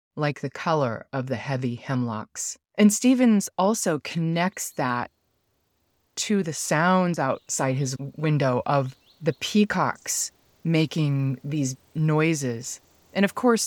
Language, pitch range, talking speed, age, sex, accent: English, 130-175 Hz, 120 wpm, 30-49, female, American